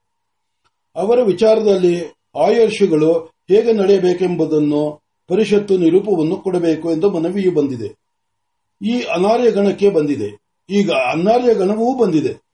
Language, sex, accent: Marathi, male, native